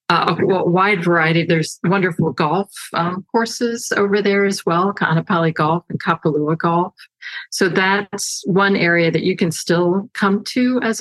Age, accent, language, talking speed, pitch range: 50-69, American, English, 160 wpm, 150-190 Hz